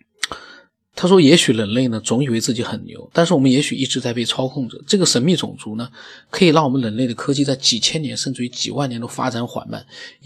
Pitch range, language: 120-160 Hz, Chinese